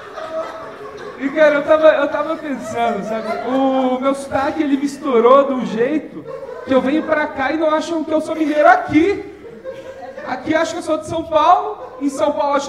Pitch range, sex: 245-320 Hz, male